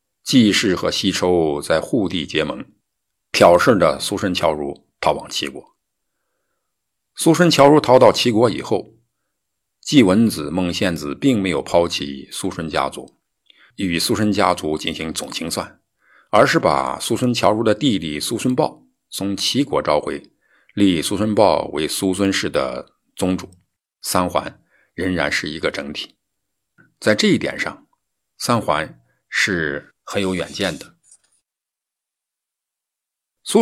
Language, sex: Chinese, male